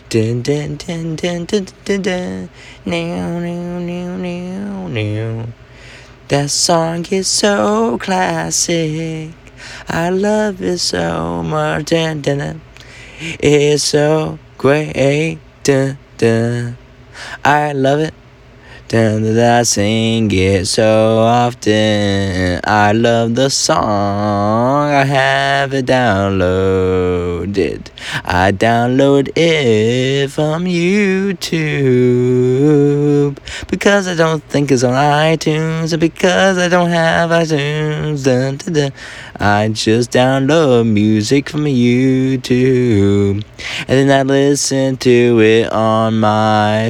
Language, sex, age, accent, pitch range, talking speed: English, male, 20-39, American, 115-155 Hz, 105 wpm